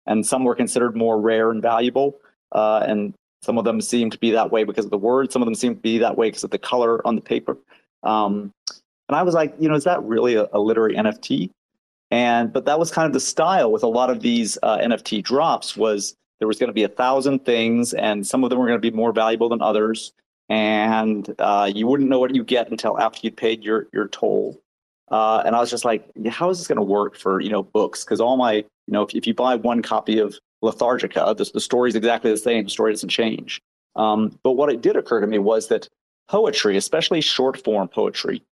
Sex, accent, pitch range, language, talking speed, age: male, American, 110-125 Hz, English, 240 wpm, 40-59